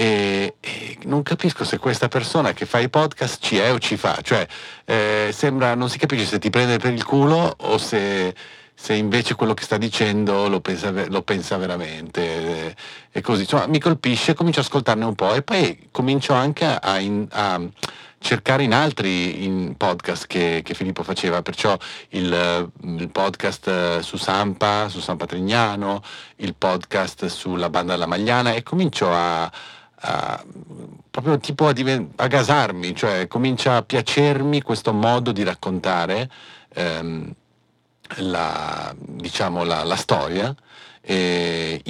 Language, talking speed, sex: Italian, 150 wpm, male